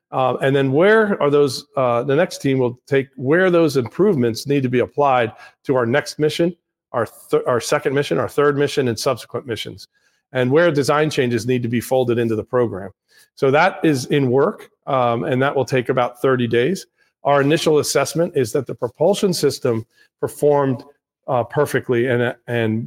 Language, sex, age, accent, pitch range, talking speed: English, male, 40-59, American, 120-145 Hz, 185 wpm